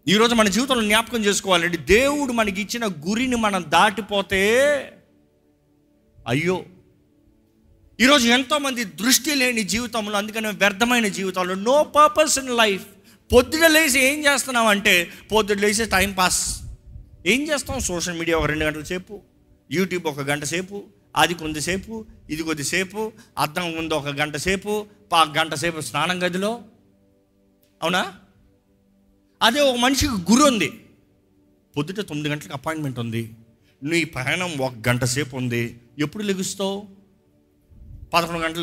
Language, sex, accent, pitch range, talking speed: Telugu, male, native, 130-215 Hz, 120 wpm